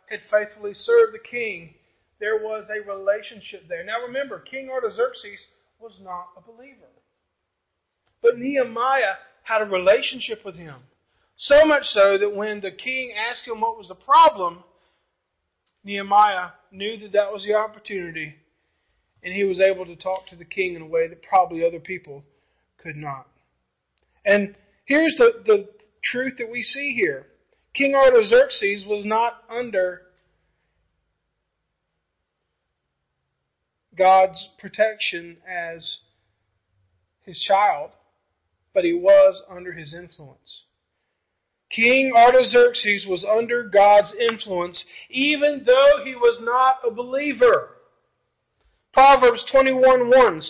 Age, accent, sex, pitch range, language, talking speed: 40-59, American, male, 180-260 Hz, English, 120 wpm